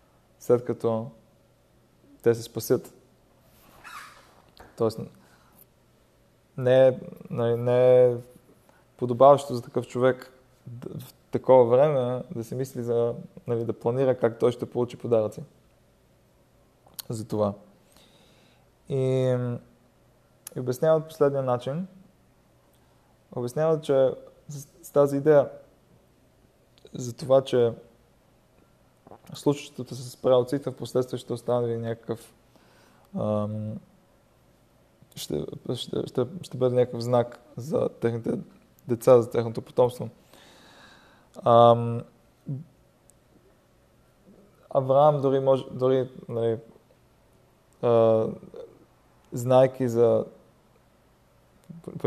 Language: Bulgarian